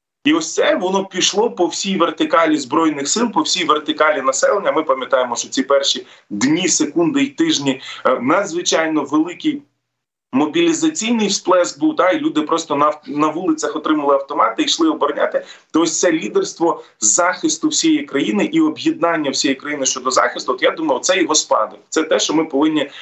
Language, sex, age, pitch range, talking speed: Ukrainian, male, 20-39, 145-220 Hz, 160 wpm